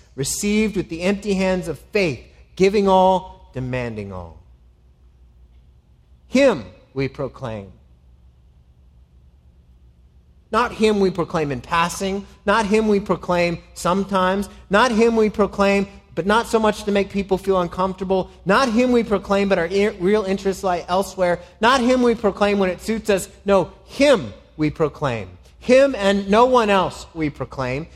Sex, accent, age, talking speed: male, American, 30-49, 145 wpm